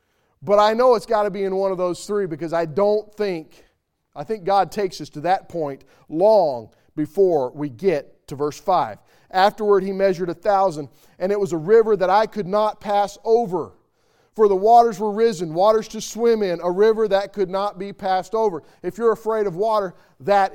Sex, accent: male, American